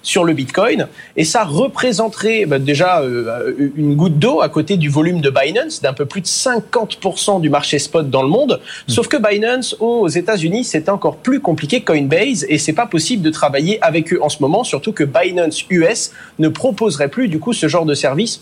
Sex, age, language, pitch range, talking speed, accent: male, 30-49, French, 150-205 Hz, 200 wpm, French